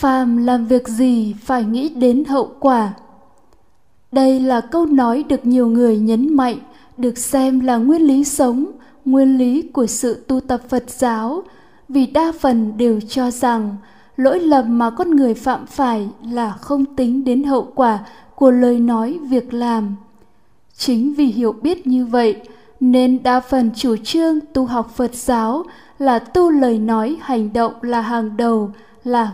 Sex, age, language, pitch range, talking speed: female, 10-29, Vietnamese, 235-270 Hz, 165 wpm